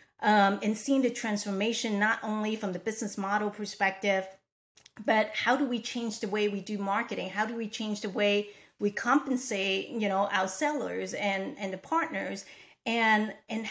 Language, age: English, 40-59